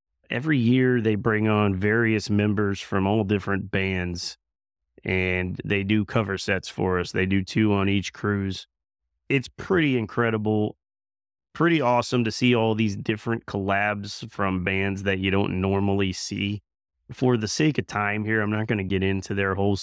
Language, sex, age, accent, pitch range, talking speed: English, male, 30-49, American, 95-125 Hz, 170 wpm